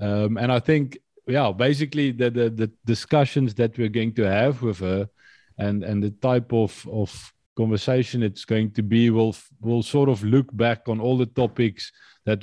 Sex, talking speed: male, 190 wpm